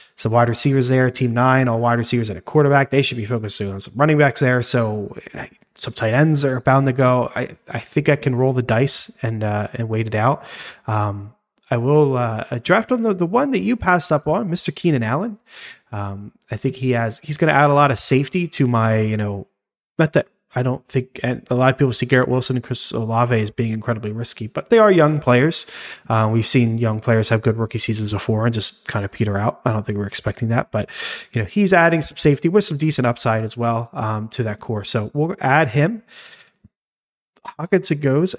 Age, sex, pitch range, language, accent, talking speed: 30-49, male, 115-150 Hz, English, American, 230 wpm